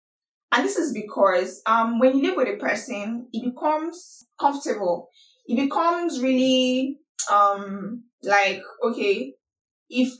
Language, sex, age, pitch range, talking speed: English, female, 20-39, 200-265 Hz, 125 wpm